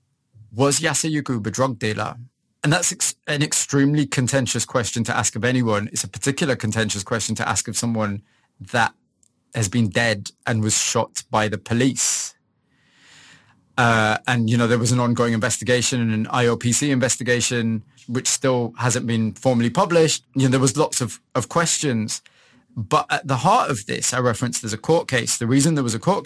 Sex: male